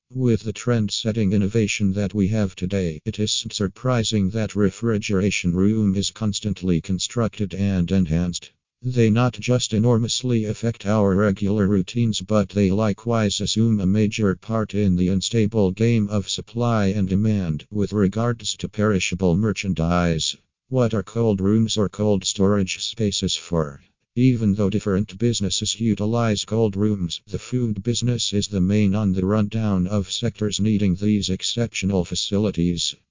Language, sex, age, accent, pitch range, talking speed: English, male, 50-69, American, 95-110 Hz, 140 wpm